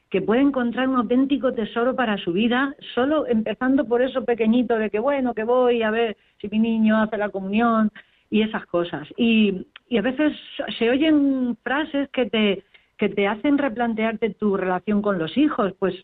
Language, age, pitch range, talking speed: Spanish, 40-59, 200-245 Hz, 185 wpm